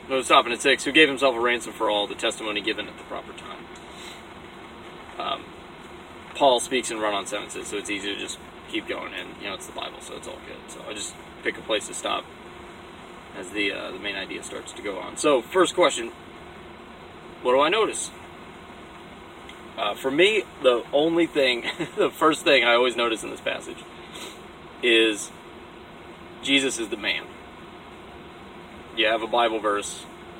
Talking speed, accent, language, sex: 180 wpm, American, English, male